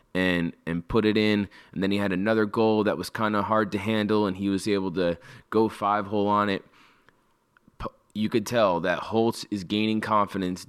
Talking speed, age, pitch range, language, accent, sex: 195 wpm, 20-39, 95-110 Hz, English, American, male